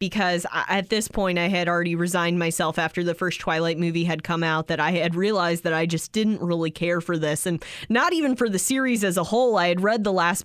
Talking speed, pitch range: 245 wpm, 175-240 Hz